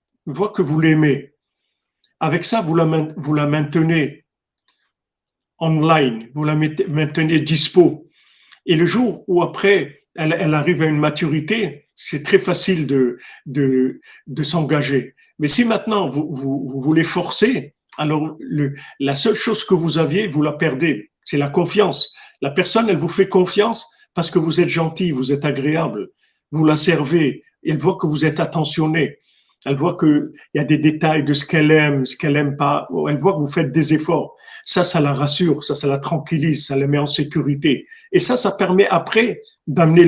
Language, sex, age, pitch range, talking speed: French, male, 50-69, 145-180 Hz, 180 wpm